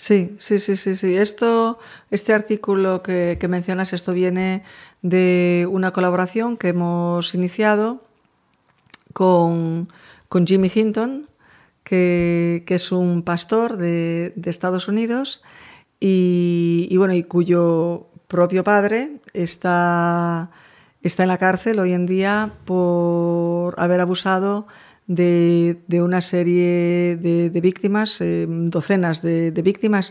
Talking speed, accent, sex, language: 125 wpm, Spanish, female, Spanish